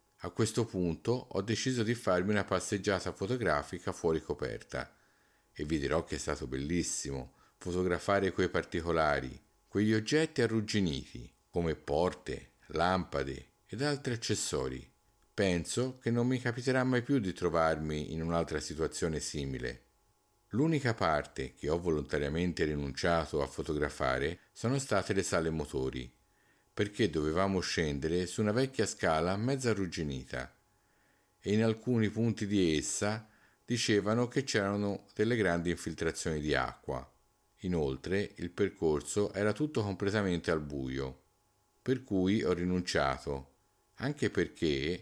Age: 50-69